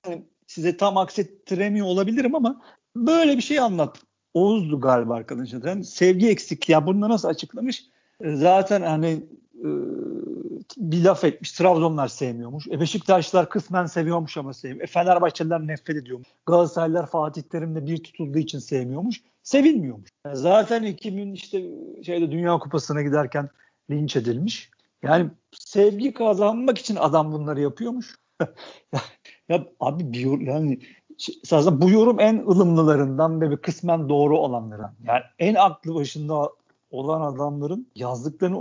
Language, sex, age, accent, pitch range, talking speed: Turkish, male, 50-69, native, 145-195 Hz, 130 wpm